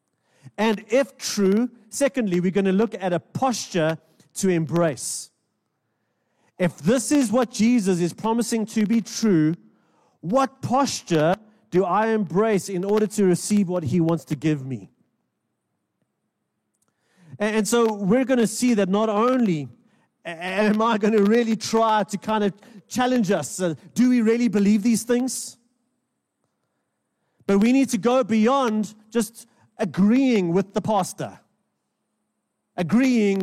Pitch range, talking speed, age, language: 180-240 Hz, 135 wpm, 30-49, English